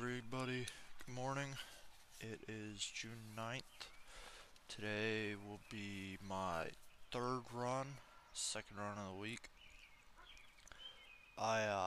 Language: English